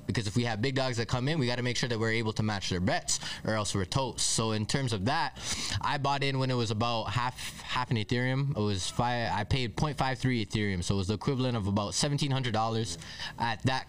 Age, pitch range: 20-39, 110-140 Hz